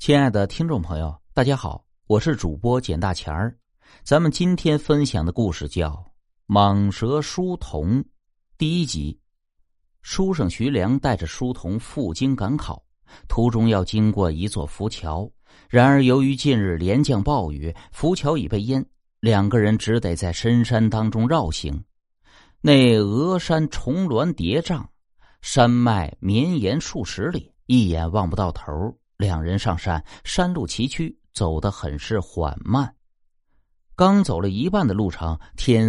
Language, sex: Chinese, male